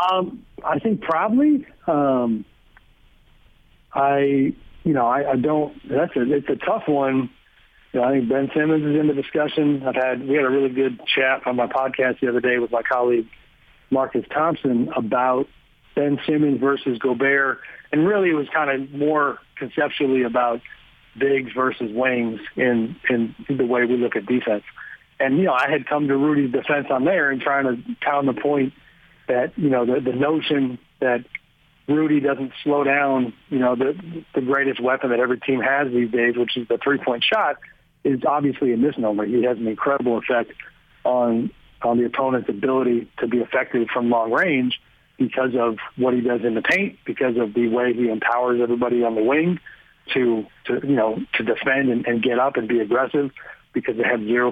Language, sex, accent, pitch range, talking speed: English, male, American, 120-140 Hz, 190 wpm